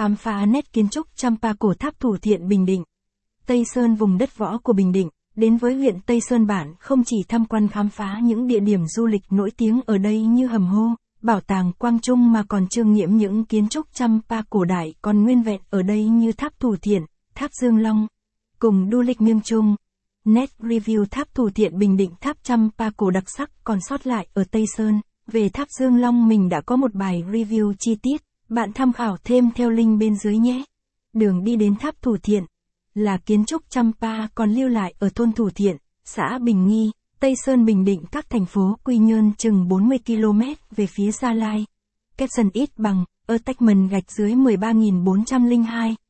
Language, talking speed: Vietnamese, 210 wpm